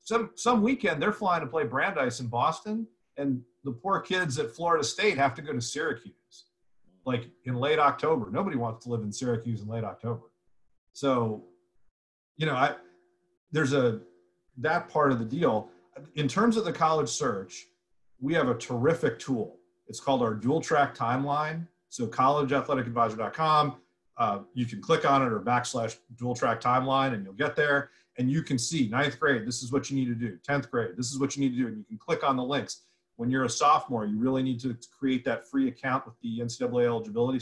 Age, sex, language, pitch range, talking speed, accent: 40-59, male, English, 115-140 Hz, 205 wpm, American